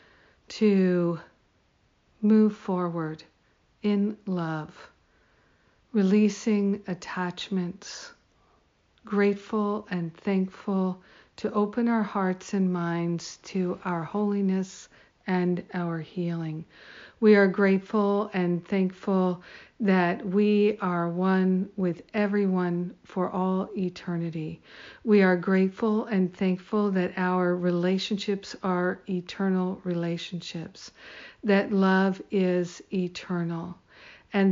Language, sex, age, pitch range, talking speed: English, female, 60-79, 180-200 Hz, 90 wpm